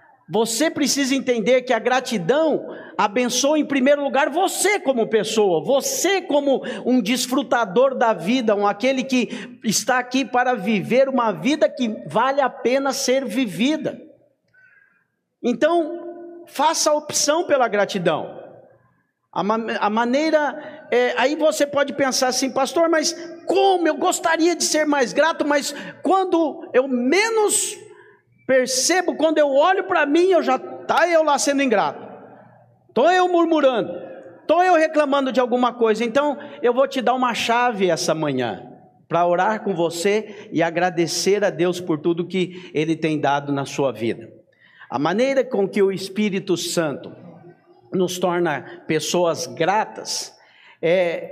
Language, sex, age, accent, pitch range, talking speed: English, male, 50-69, Brazilian, 185-295 Hz, 140 wpm